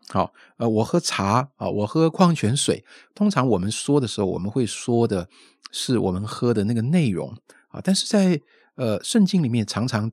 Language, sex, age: Chinese, male, 50-69